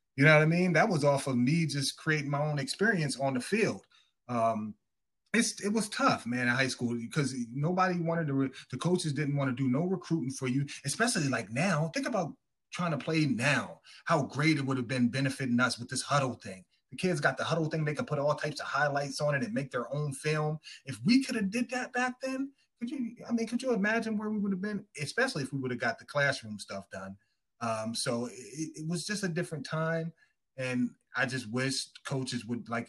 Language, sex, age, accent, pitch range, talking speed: English, male, 30-49, American, 125-170 Hz, 235 wpm